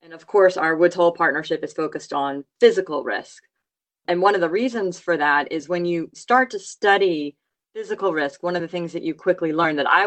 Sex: female